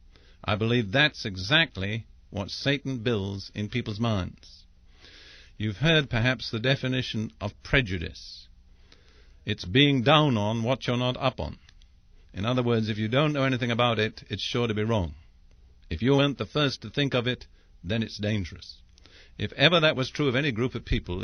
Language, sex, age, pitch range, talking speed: English, male, 50-69, 90-135 Hz, 180 wpm